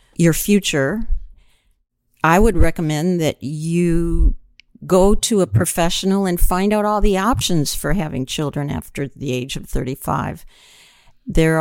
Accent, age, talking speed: American, 50-69, 135 wpm